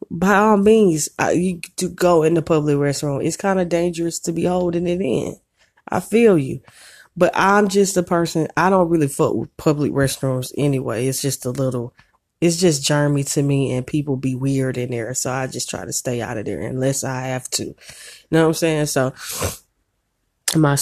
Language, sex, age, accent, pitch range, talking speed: English, female, 20-39, American, 135-165 Hz, 200 wpm